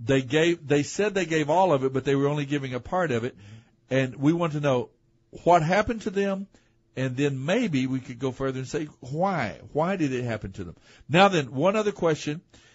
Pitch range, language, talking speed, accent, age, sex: 130-180 Hz, English, 225 wpm, American, 60-79, male